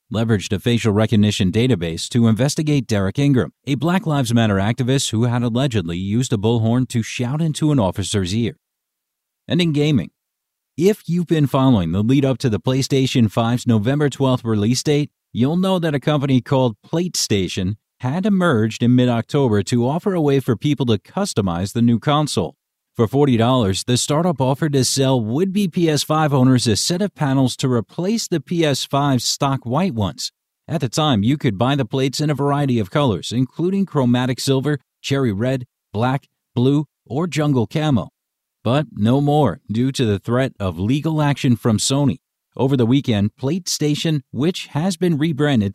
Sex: male